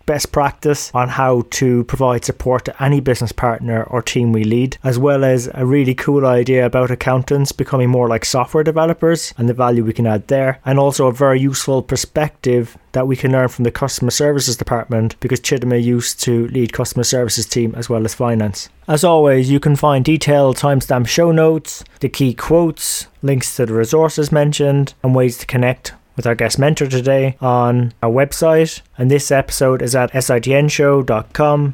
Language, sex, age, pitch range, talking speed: English, male, 20-39, 125-145 Hz, 185 wpm